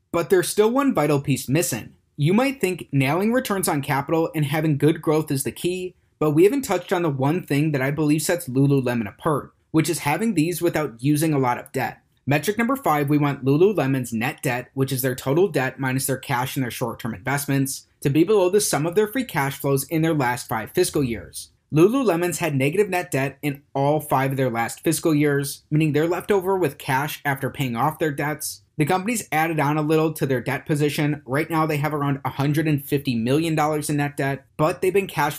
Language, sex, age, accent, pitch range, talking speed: English, male, 30-49, American, 135-165 Hz, 220 wpm